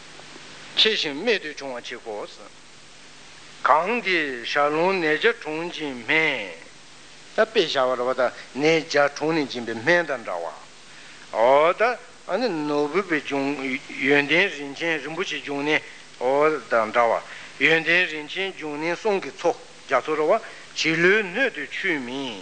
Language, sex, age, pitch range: Italian, male, 60-79, 140-170 Hz